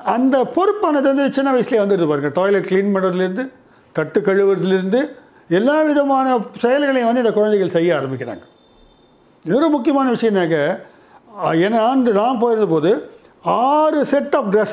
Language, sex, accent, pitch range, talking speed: Tamil, male, native, 160-245 Hz, 130 wpm